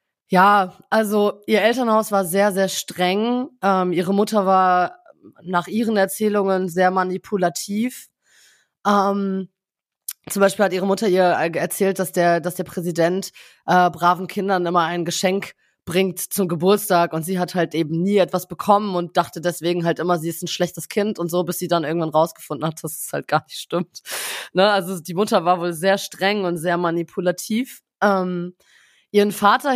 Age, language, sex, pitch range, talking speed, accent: 20-39, German, female, 160-190 Hz, 170 wpm, German